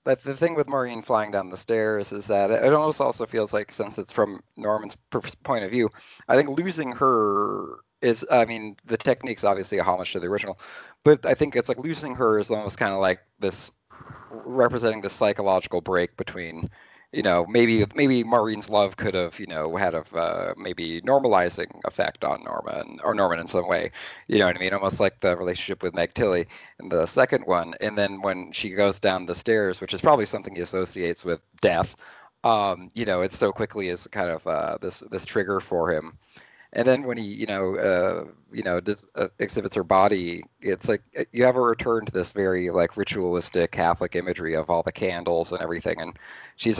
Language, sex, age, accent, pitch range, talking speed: English, male, 40-59, American, 90-120 Hz, 205 wpm